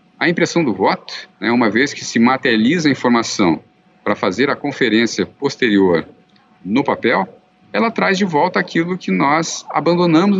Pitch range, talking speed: 125-180 Hz, 155 wpm